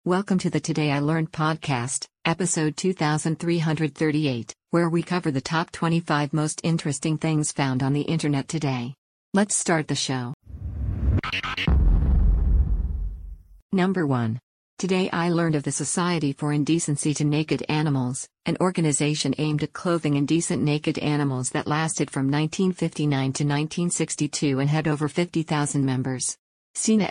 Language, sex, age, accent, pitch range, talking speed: English, female, 50-69, American, 140-165 Hz, 135 wpm